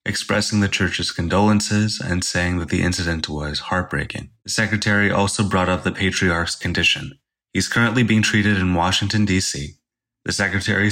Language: English